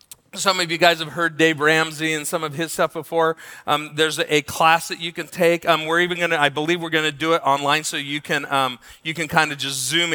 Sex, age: male, 40-59